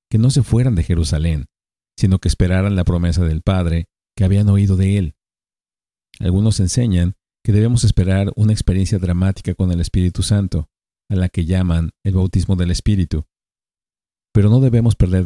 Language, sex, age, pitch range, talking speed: Spanish, male, 50-69, 90-105 Hz, 165 wpm